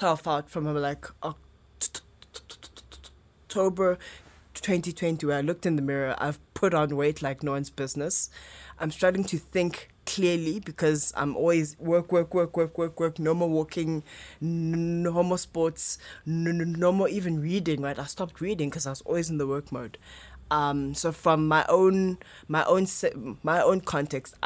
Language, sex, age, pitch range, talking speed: English, female, 20-39, 145-175 Hz, 160 wpm